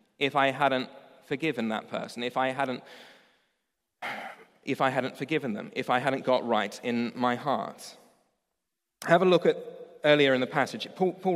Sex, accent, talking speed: male, British, 170 wpm